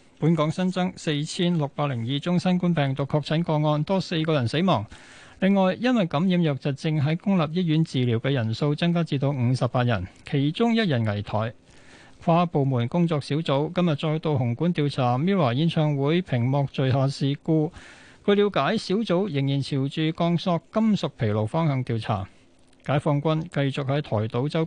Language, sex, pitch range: Chinese, male, 130-175 Hz